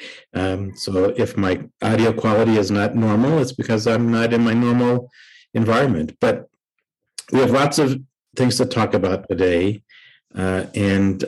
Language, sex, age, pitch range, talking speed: English, male, 50-69, 95-115 Hz, 155 wpm